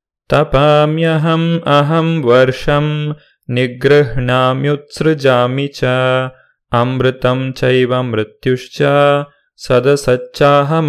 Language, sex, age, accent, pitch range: Kannada, male, 20-39, native, 120-145 Hz